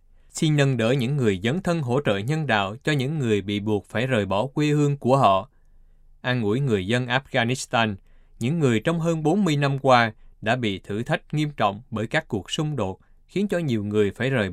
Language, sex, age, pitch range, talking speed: Vietnamese, male, 20-39, 105-140 Hz, 215 wpm